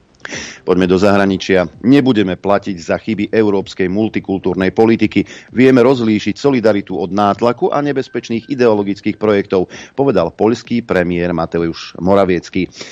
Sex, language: male, Slovak